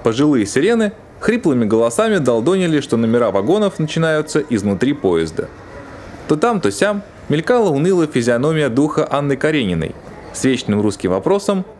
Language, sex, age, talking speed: Russian, male, 20-39, 125 wpm